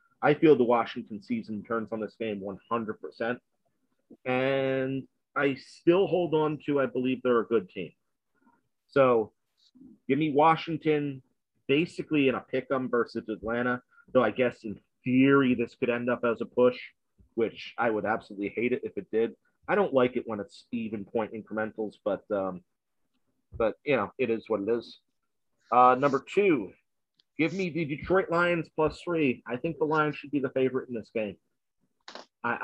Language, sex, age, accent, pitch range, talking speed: English, male, 40-59, American, 115-150 Hz, 175 wpm